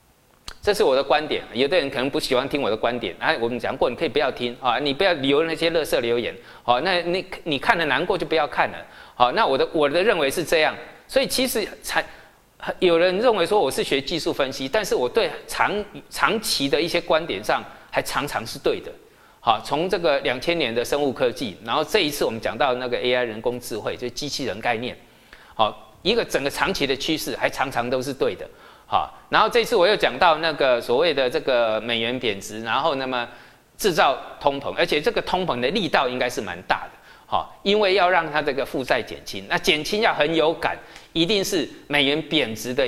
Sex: male